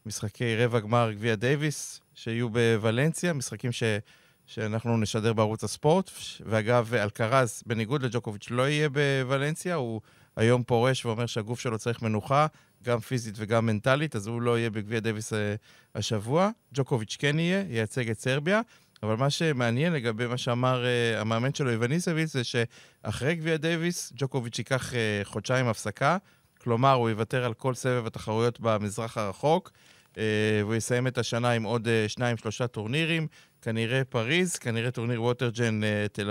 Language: Hebrew